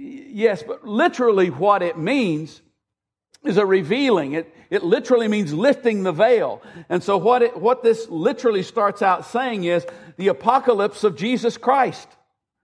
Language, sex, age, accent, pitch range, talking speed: English, male, 60-79, American, 185-235 Hz, 150 wpm